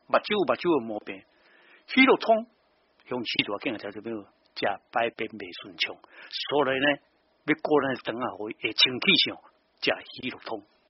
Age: 60-79